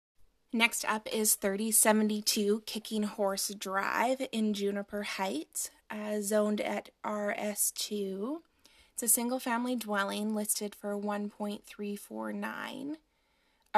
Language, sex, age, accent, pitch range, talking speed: English, female, 20-39, American, 205-235 Hz, 90 wpm